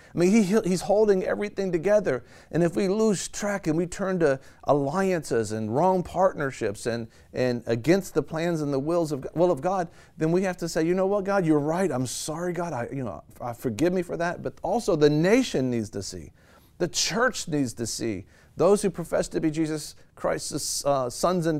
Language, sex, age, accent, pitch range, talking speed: English, male, 40-59, American, 130-180 Hz, 210 wpm